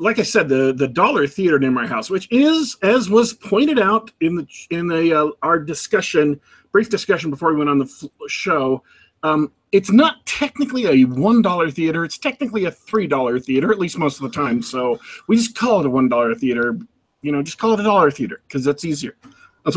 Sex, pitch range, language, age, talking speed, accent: male, 155-255 Hz, English, 40-59, 215 wpm, American